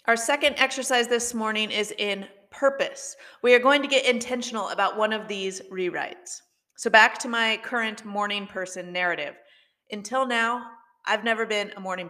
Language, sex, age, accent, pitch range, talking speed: English, female, 30-49, American, 195-250 Hz, 170 wpm